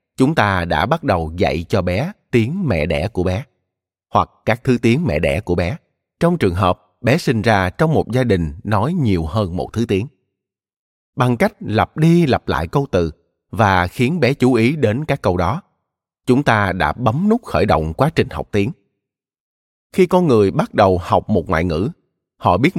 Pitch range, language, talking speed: 95-155 Hz, Vietnamese, 200 wpm